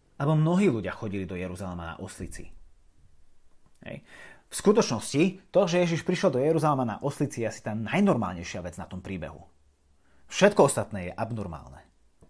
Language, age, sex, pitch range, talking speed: Slovak, 30-49, male, 115-180 Hz, 150 wpm